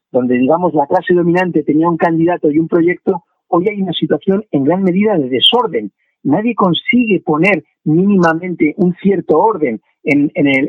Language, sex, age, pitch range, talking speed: Spanish, male, 50-69, 160-200 Hz, 170 wpm